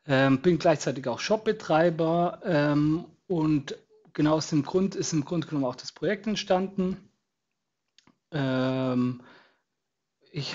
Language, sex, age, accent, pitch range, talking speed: German, male, 40-59, German, 135-170 Hz, 120 wpm